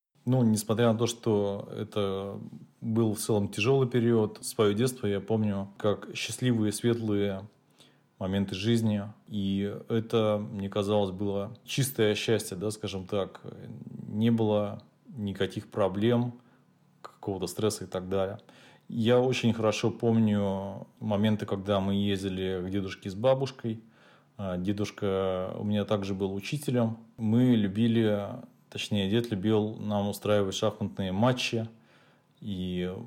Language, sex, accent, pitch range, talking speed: Russian, male, native, 95-115 Hz, 120 wpm